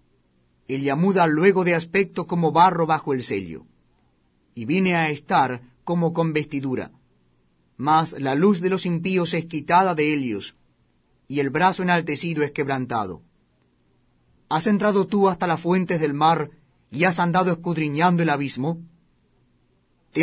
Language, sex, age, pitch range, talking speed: Spanish, male, 40-59, 125-185 Hz, 140 wpm